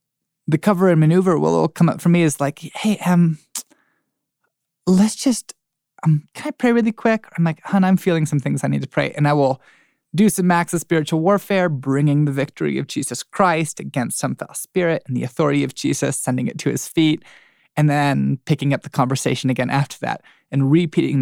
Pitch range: 140-180 Hz